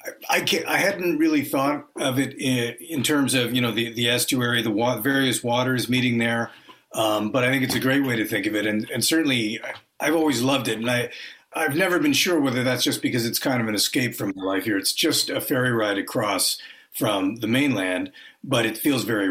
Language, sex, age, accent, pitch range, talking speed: English, male, 50-69, American, 110-180 Hz, 225 wpm